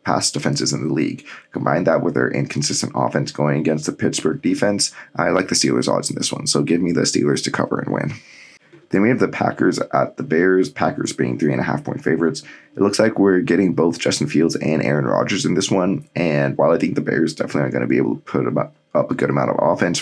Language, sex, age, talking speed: English, male, 20-39, 250 wpm